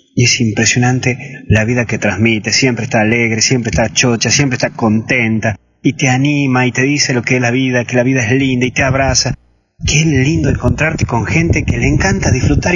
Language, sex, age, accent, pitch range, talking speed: Spanish, male, 30-49, Argentinian, 110-160 Hz, 205 wpm